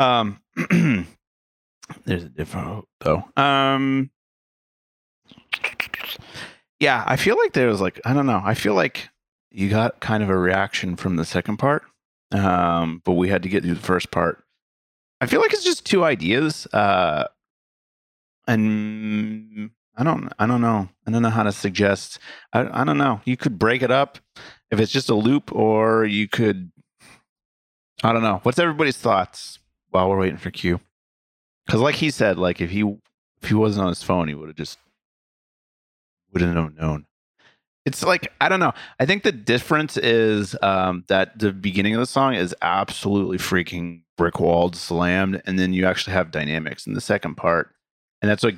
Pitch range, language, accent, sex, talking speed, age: 90-115 Hz, English, American, male, 180 wpm, 30-49